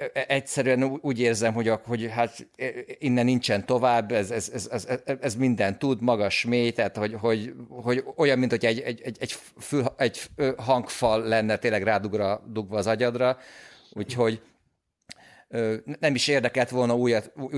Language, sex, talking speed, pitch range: Hungarian, male, 135 wpm, 105-125 Hz